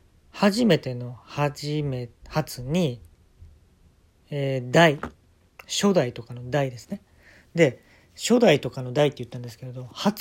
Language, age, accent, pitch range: Japanese, 40-59, native, 115-180 Hz